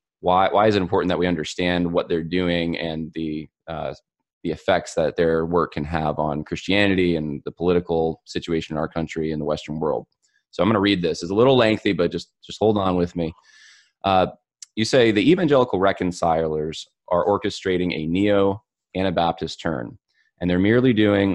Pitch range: 80-105 Hz